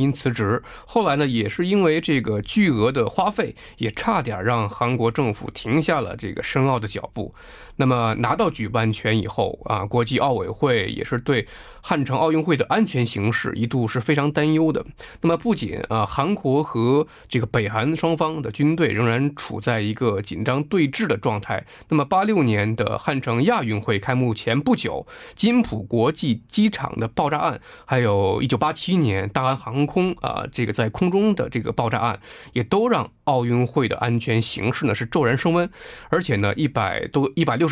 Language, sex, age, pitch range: Korean, male, 20-39, 115-155 Hz